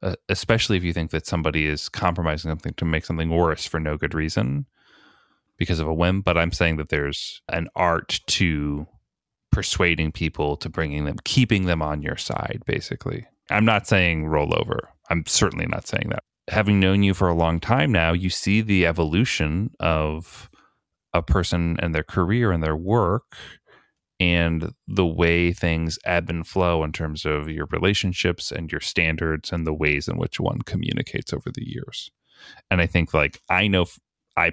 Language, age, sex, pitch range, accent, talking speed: English, 30-49, male, 80-95 Hz, American, 180 wpm